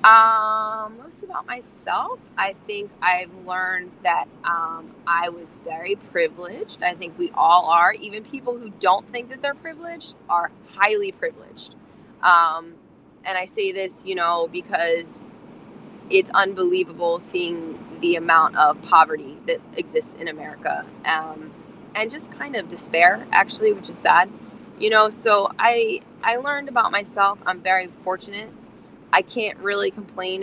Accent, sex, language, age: American, female, English, 20-39